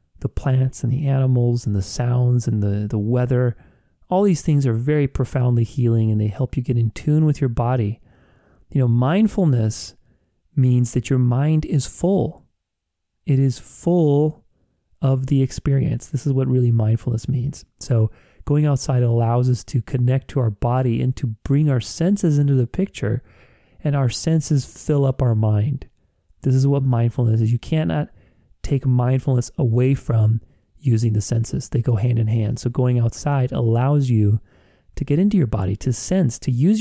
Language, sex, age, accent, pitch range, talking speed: English, male, 30-49, American, 115-140 Hz, 175 wpm